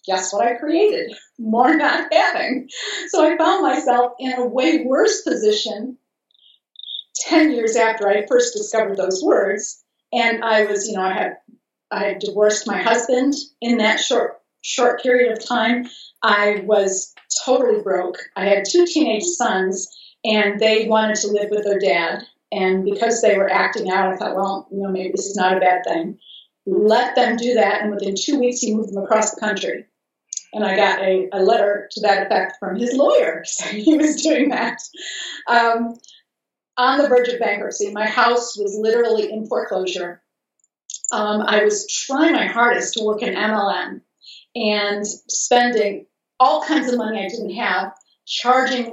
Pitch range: 205-255 Hz